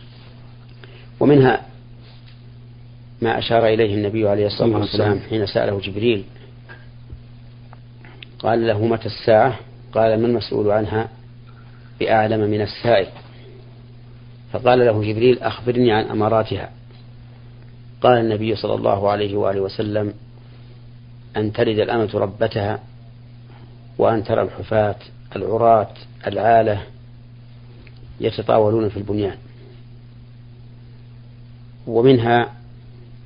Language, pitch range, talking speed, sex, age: Arabic, 110-120 Hz, 85 wpm, male, 40-59